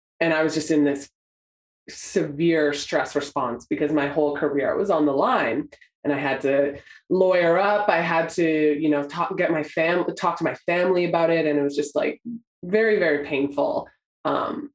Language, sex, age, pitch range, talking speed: English, female, 20-39, 145-175 Hz, 190 wpm